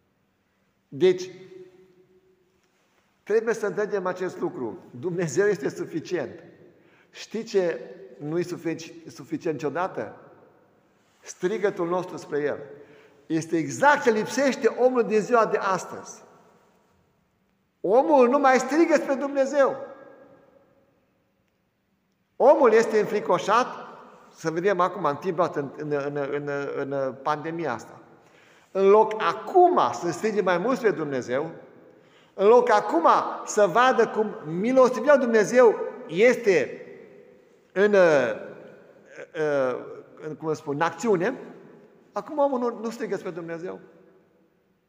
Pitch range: 180-270 Hz